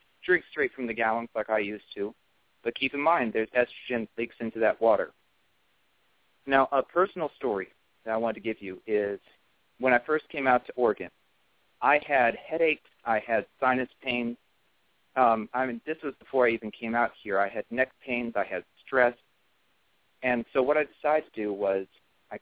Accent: American